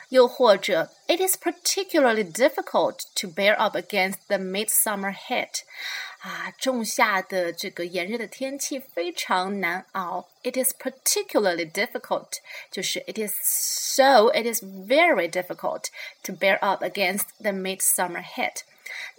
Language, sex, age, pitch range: Chinese, female, 30-49, 195-300 Hz